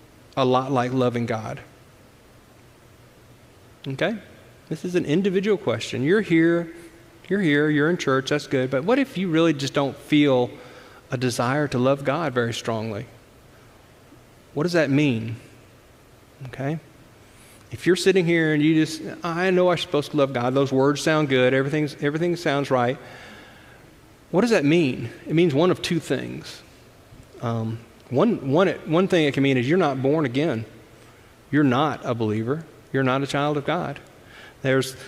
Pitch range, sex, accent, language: 125-160 Hz, male, American, English